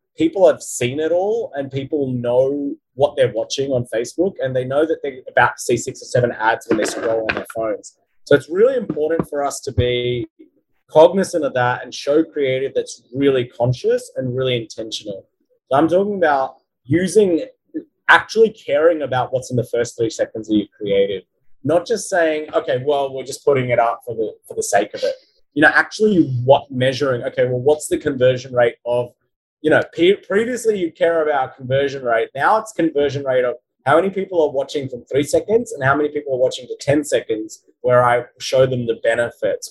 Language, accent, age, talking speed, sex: English, Australian, 20-39, 200 wpm, male